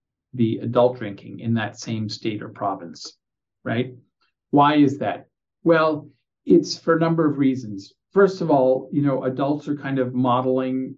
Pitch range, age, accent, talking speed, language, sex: 120-145 Hz, 50-69, American, 165 wpm, English, male